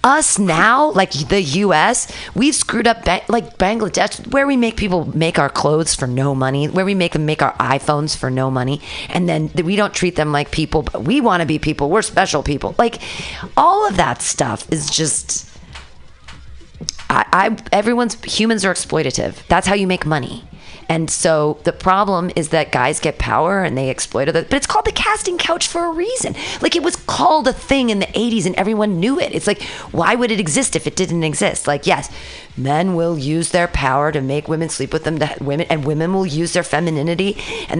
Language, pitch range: English, 155-225 Hz